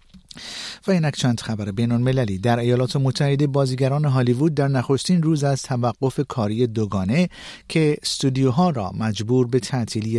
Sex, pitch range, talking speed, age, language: male, 110-150 Hz, 135 wpm, 50-69, Persian